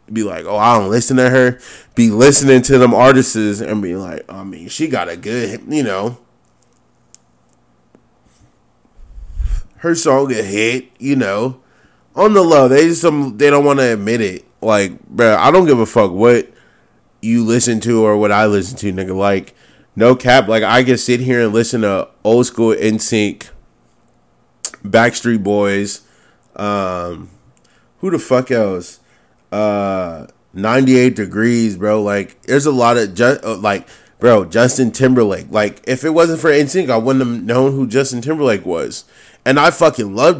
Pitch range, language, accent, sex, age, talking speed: 100-130 Hz, English, American, male, 20-39, 170 wpm